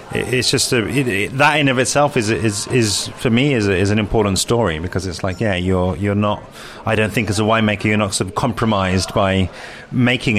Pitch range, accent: 100-130 Hz, British